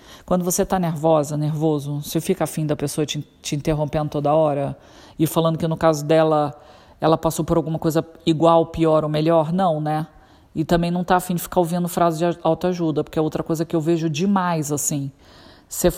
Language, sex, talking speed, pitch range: Portuguese, female, 200 wpm, 165-205 Hz